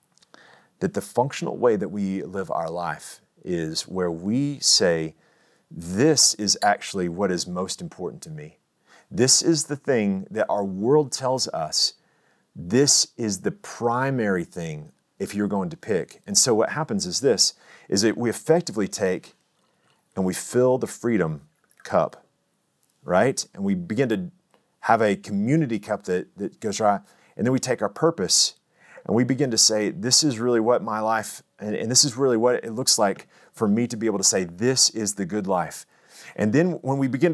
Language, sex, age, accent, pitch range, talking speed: English, male, 40-59, American, 105-150 Hz, 180 wpm